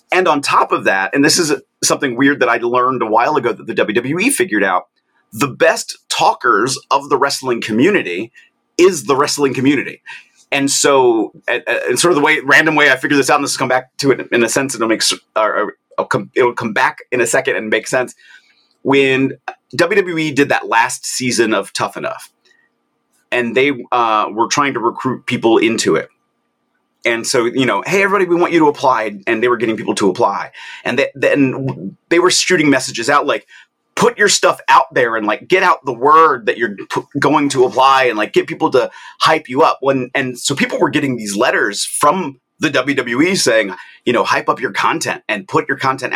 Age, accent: 30-49, American